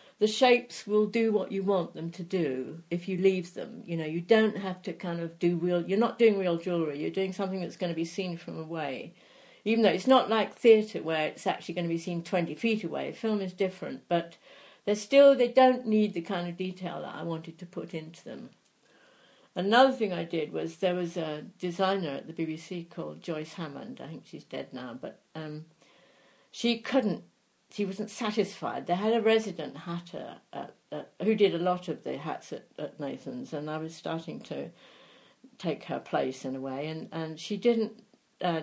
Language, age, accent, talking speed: English, 60-79, British, 210 wpm